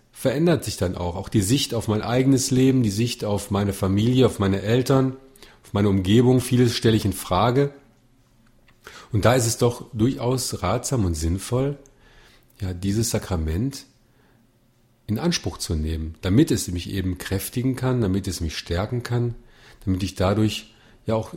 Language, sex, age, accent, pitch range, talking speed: German, male, 40-59, German, 95-125 Hz, 165 wpm